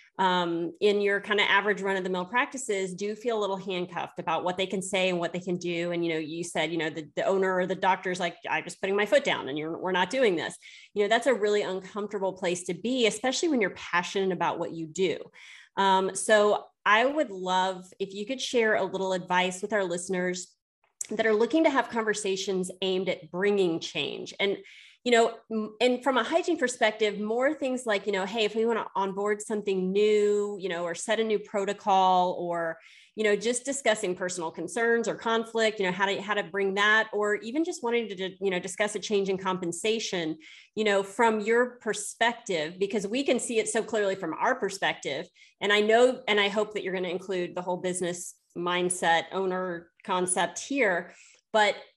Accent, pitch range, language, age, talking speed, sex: American, 185-220 Hz, English, 30-49, 210 wpm, female